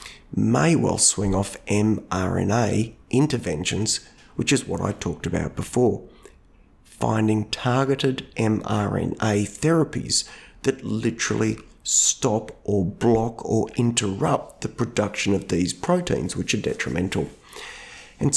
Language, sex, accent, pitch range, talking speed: English, male, Australian, 100-125 Hz, 110 wpm